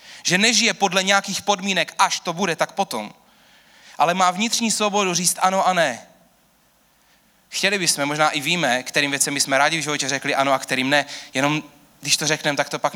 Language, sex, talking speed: Czech, male, 190 wpm